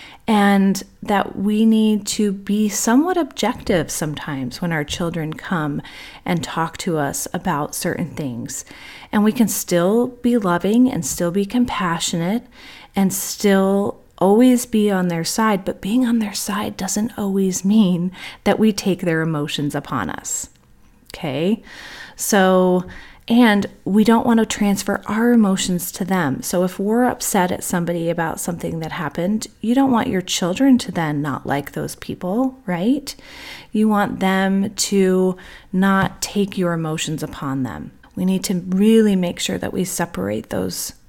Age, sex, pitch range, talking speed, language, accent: 30-49, female, 175-215 Hz, 155 wpm, English, American